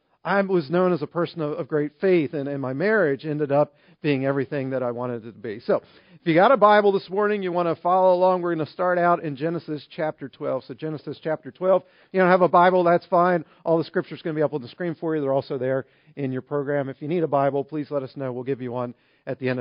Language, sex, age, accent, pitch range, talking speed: English, male, 50-69, American, 135-175 Hz, 280 wpm